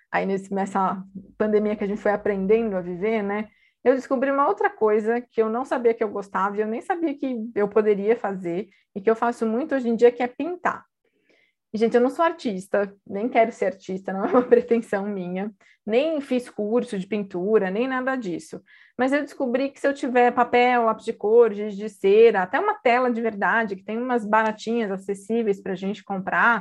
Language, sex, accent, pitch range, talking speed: Portuguese, female, Brazilian, 200-250 Hz, 210 wpm